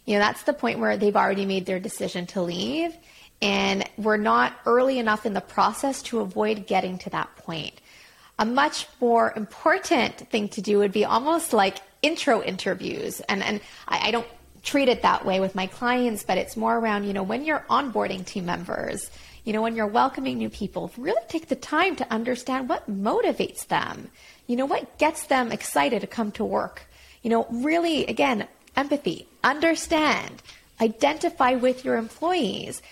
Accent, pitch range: American, 205-265 Hz